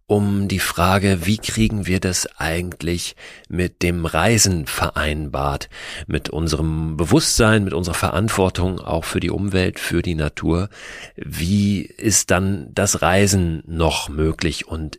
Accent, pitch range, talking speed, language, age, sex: German, 90-105 Hz, 130 wpm, German, 40-59, male